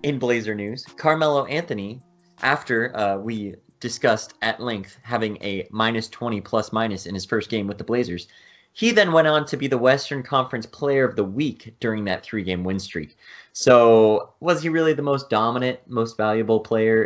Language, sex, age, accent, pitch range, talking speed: English, male, 20-39, American, 100-135 Hz, 185 wpm